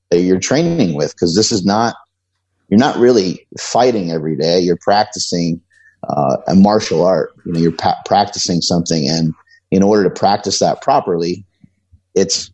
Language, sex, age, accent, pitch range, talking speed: English, male, 30-49, American, 85-100 Hz, 165 wpm